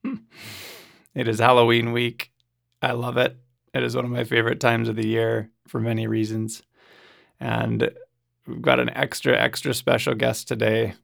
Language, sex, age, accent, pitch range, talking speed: English, male, 20-39, American, 110-125 Hz, 160 wpm